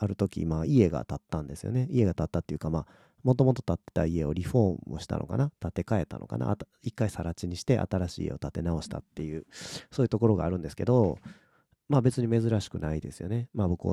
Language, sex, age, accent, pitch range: Japanese, male, 40-59, native, 80-110 Hz